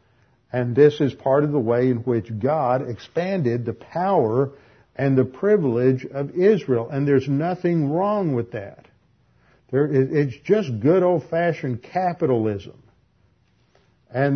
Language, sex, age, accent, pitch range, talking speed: English, male, 50-69, American, 120-145 Hz, 125 wpm